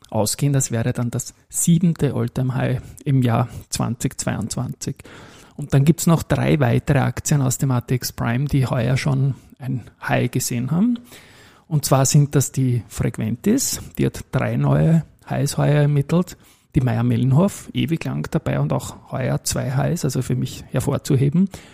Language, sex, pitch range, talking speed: German, male, 120-140 Hz, 155 wpm